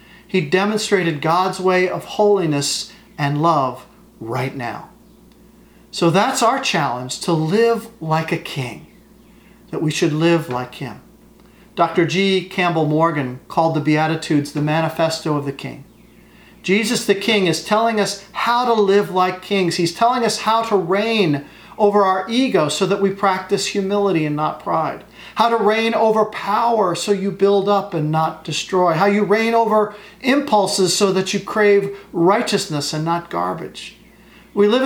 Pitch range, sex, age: 170-210 Hz, male, 40-59